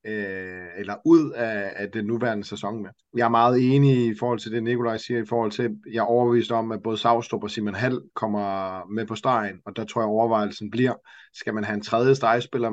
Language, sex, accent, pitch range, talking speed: Danish, male, native, 105-120 Hz, 220 wpm